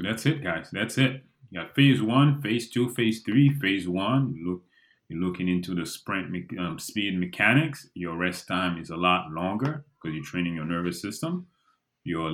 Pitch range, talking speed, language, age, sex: 85-115 Hz, 195 wpm, English, 30-49, male